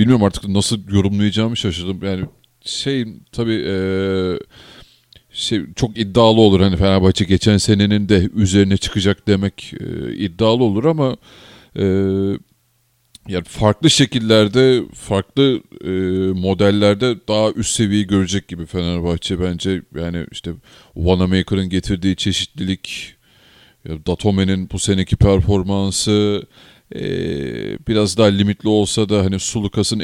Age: 40-59